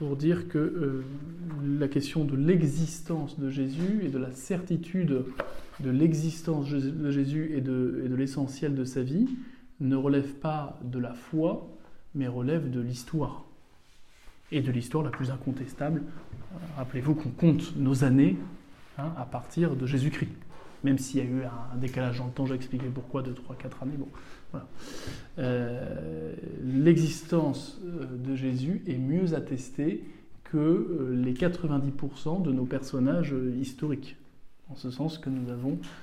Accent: French